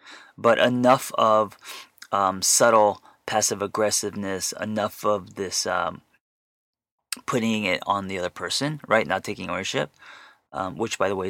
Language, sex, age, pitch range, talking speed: English, male, 30-49, 95-120 Hz, 140 wpm